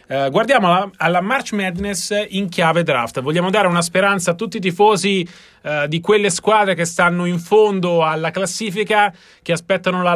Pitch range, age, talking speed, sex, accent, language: 160-195 Hz, 30-49, 165 wpm, male, native, Italian